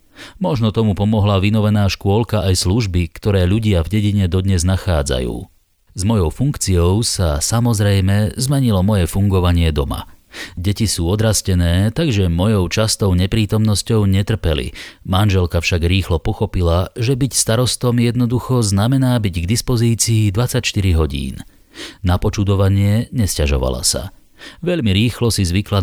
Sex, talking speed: male, 120 wpm